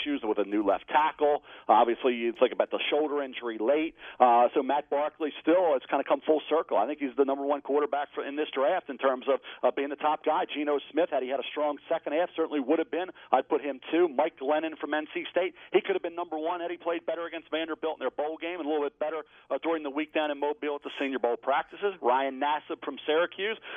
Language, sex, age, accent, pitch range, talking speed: English, male, 40-59, American, 145-180 Hz, 260 wpm